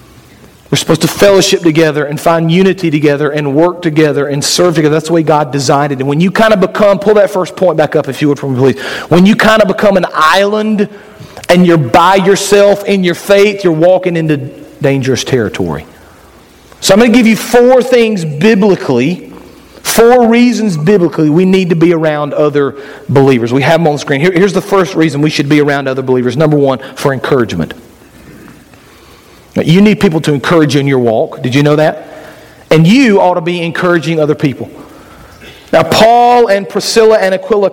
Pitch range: 150-195 Hz